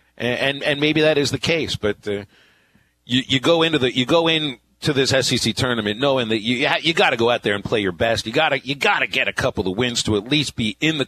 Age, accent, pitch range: 40-59, American, 110-140 Hz